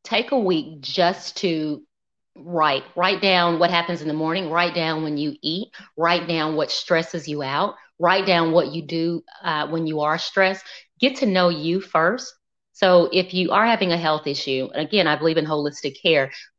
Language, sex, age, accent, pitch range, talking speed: English, female, 30-49, American, 155-190 Hz, 195 wpm